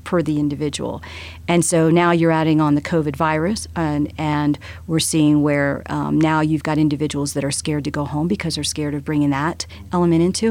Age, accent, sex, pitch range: 40-59, American, female, 145-175 Hz